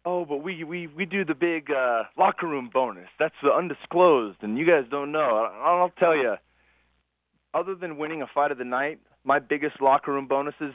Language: English